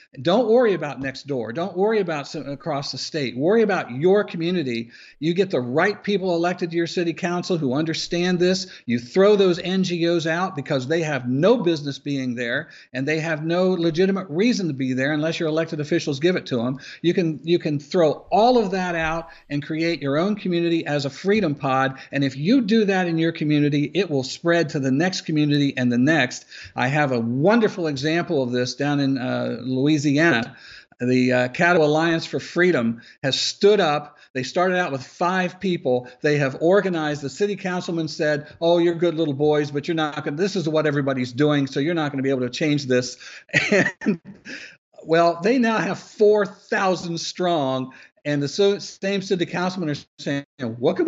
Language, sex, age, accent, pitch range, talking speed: English, male, 50-69, American, 135-180 Hz, 200 wpm